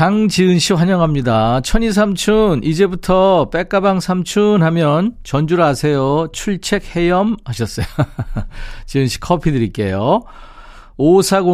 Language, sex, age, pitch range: Korean, male, 50-69, 125-185 Hz